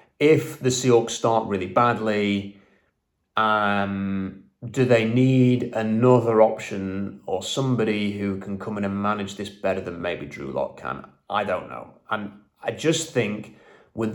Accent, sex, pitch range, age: British, male, 100-125 Hz, 30-49